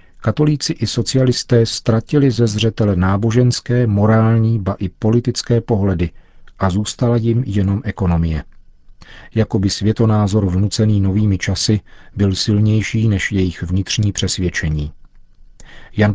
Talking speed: 110 wpm